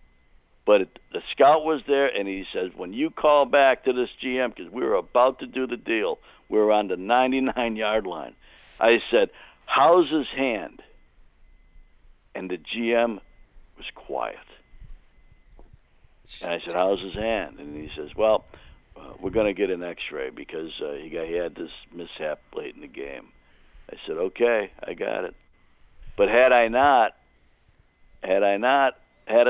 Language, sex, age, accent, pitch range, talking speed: English, male, 60-79, American, 105-150 Hz, 165 wpm